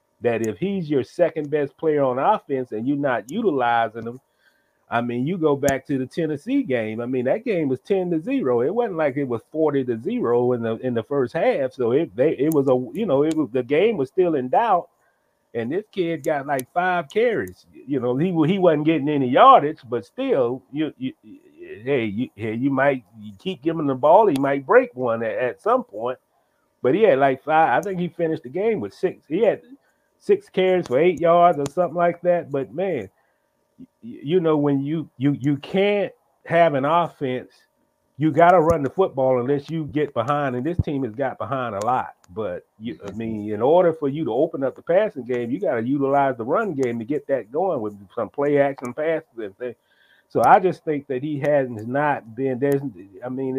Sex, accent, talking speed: male, American, 220 wpm